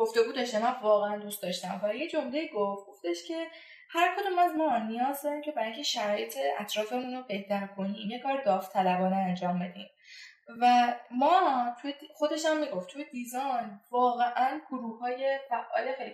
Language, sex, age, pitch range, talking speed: Persian, female, 10-29, 205-285 Hz, 155 wpm